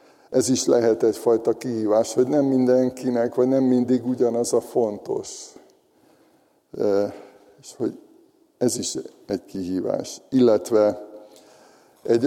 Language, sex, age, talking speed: Hungarian, male, 60-79, 110 wpm